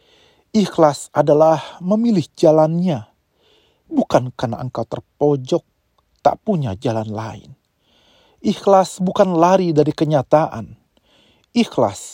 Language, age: Indonesian, 40-59